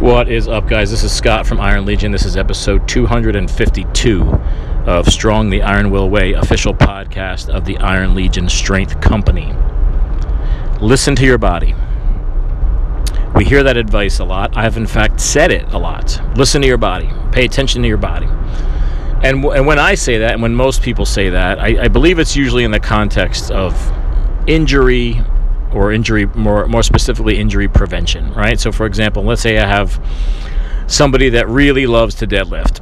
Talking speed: 180 wpm